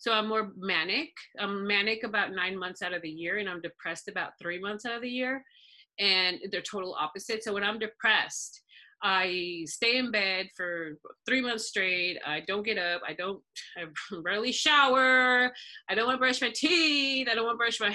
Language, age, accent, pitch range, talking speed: English, 30-49, American, 180-230 Hz, 205 wpm